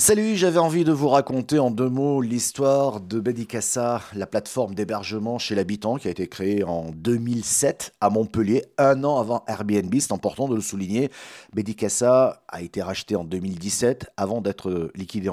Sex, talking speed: male, 170 wpm